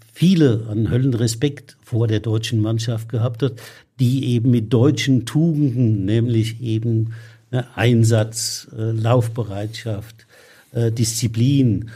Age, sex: 60-79, male